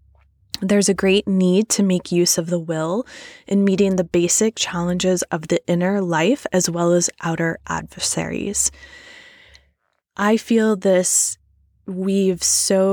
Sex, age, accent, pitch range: female, 20-39, American, 170-200 Hz